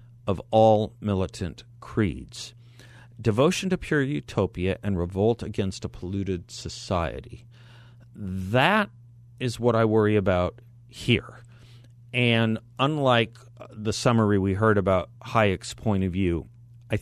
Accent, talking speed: American, 115 wpm